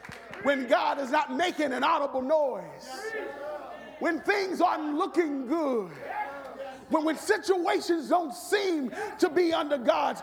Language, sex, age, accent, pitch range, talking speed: English, male, 40-59, American, 285-380 Hz, 130 wpm